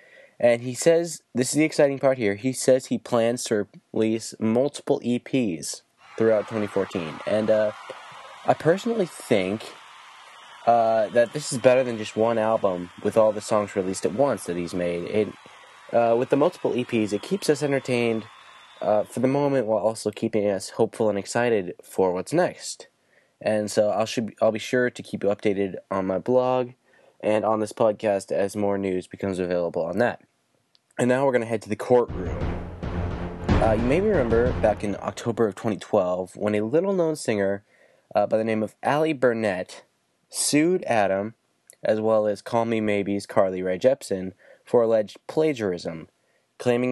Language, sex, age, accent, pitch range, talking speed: English, male, 20-39, American, 100-125 Hz, 170 wpm